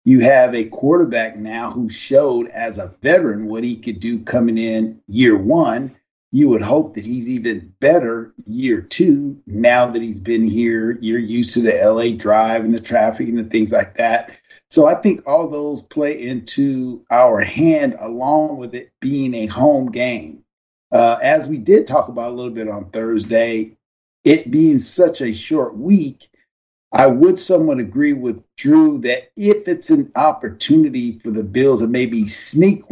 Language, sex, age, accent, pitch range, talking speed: English, male, 50-69, American, 115-185 Hz, 175 wpm